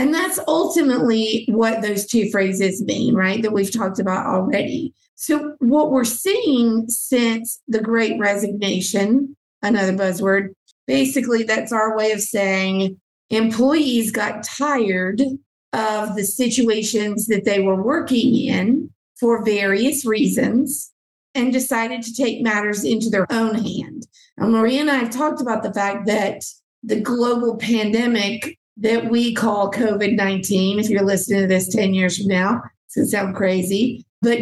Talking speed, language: 150 wpm, English